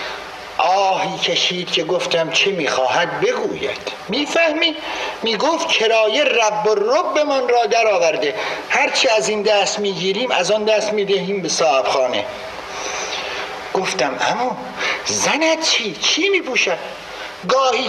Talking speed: 115 wpm